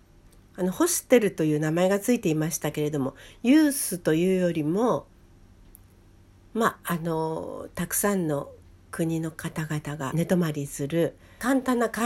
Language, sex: Japanese, female